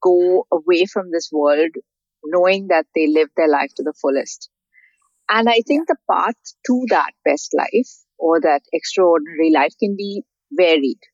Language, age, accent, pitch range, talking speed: English, 50-69, Indian, 160-215 Hz, 160 wpm